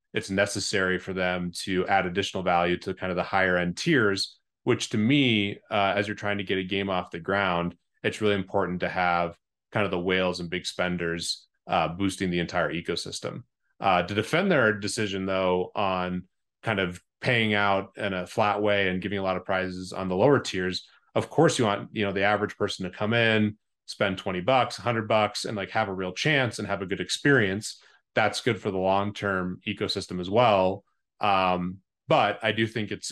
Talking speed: 205 wpm